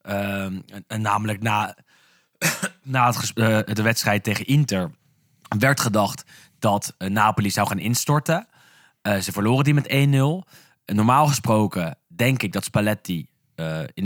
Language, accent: Dutch, Dutch